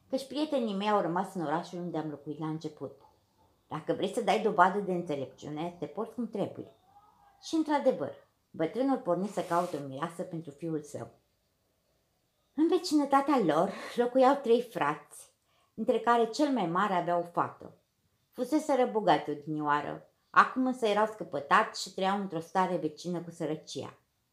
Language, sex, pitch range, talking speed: Romanian, female, 155-240 Hz, 150 wpm